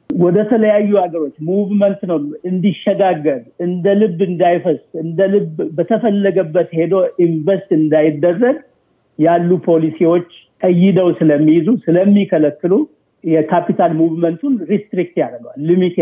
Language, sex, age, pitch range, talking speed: Amharic, male, 60-79, 155-200 Hz, 95 wpm